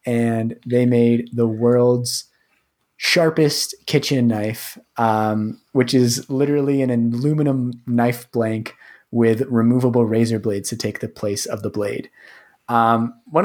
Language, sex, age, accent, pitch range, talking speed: English, male, 20-39, American, 115-140 Hz, 130 wpm